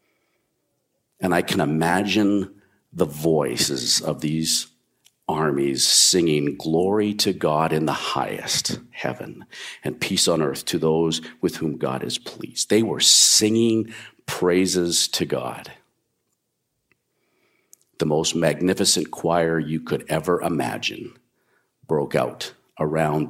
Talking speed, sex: 115 wpm, male